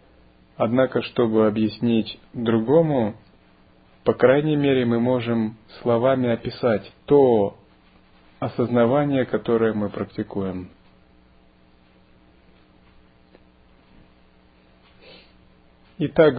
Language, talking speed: Russian, 60 wpm